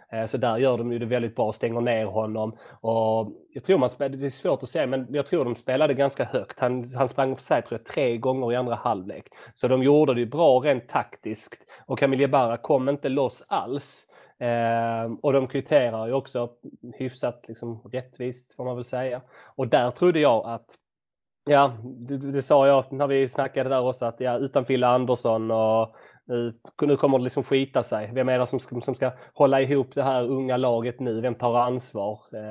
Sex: male